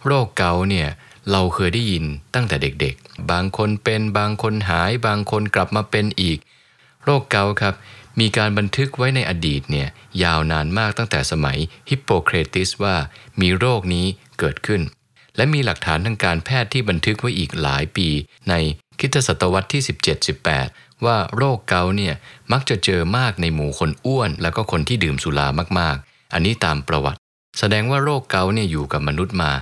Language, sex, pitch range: English, male, 80-110 Hz